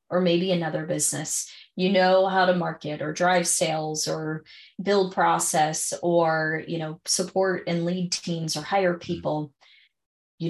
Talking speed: 150 wpm